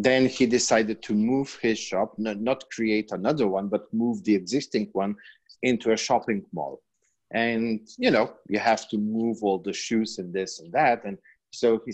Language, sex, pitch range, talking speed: English, male, 100-115 Hz, 185 wpm